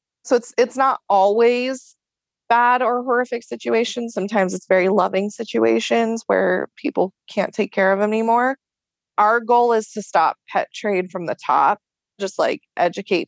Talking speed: 160 wpm